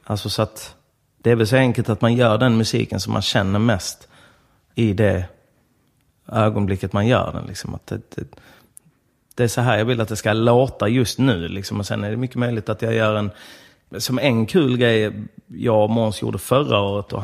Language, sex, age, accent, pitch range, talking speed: English, male, 30-49, Swedish, 105-125 Hz, 210 wpm